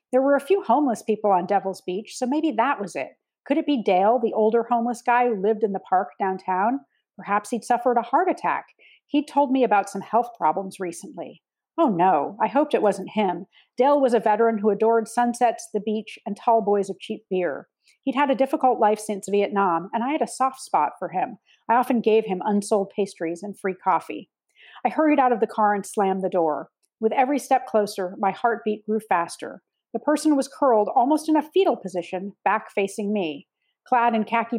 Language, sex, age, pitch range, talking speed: English, female, 40-59, 195-245 Hz, 210 wpm